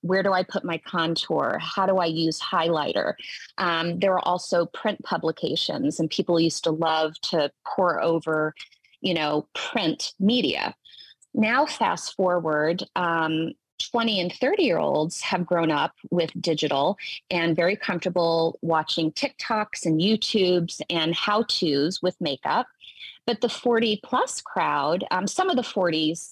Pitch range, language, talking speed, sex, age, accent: 165-210 Hz, English, 140 wpm, female, 30-49, American